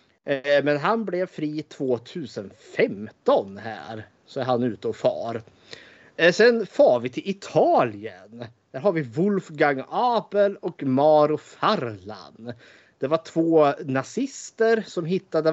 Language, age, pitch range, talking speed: Swedish, 30-49, 115-165 Hz, 120 wpm